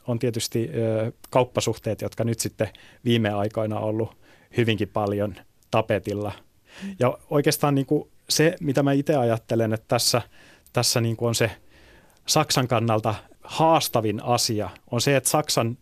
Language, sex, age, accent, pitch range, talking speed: Finnish, male, 30-49, native, 115-130 Hz, 125 wpm